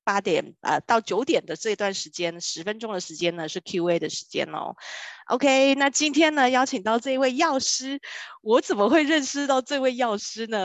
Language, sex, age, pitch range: Chinese, female, 20-39, 180-265 Hz